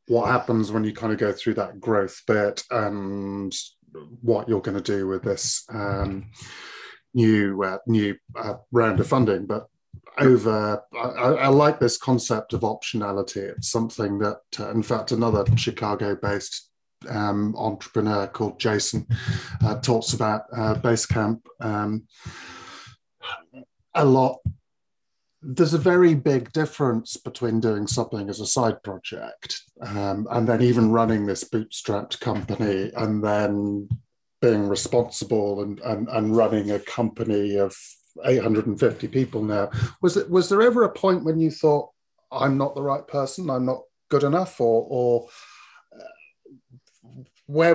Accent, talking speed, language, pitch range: British, 140 wpm, English, 105-130 Hz